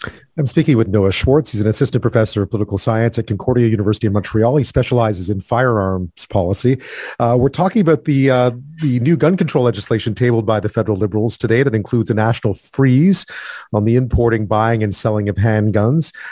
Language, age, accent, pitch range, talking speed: English, 40-59, American, 105-125 Hz, 190 wpm